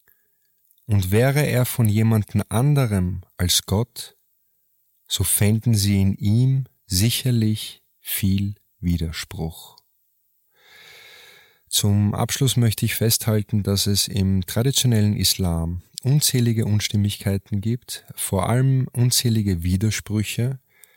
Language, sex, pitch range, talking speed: German, male, 95-120 Hz, 95 wpm